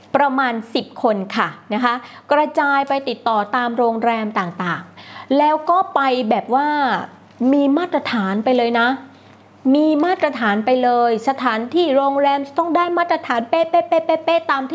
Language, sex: Thai, female